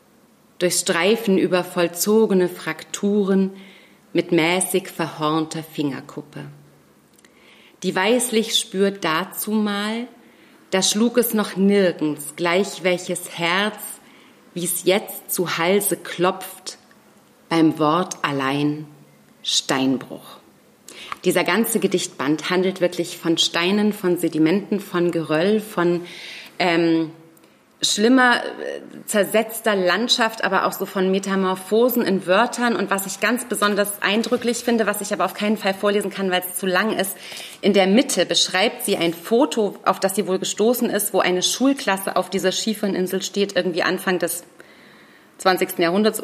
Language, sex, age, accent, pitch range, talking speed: German, female, 30-49, German, 180-215 Hz, 130 wpm